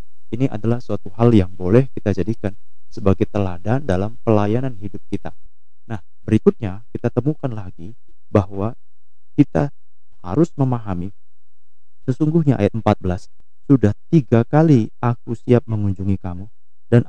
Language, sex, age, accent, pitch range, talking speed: Indonesian, male, 30-49, native, 95-125 Hz, 120 wpm